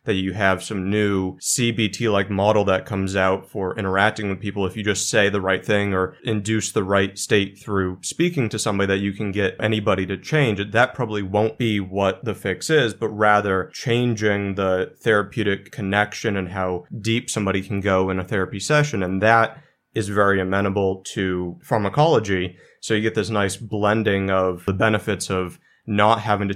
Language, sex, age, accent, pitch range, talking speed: English, male, 20-39, American, 95-110 Hz, 185 wpm